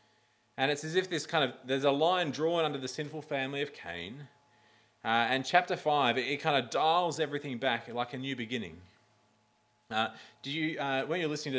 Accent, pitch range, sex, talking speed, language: Australian, 115-145 Hz, male, 205 wpm, English